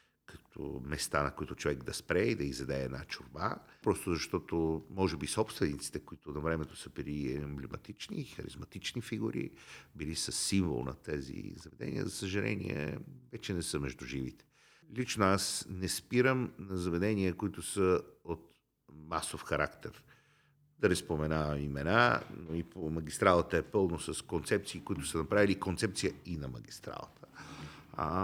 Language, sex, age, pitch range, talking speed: Bulgarian, male, 50-69, 75-95 Hz, 145 wpm